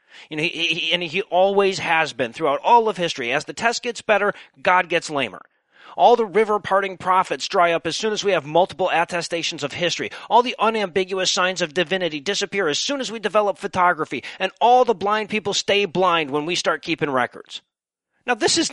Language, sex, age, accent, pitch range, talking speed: English, male, 40-59, American, 180-245 Hz, 195 wpm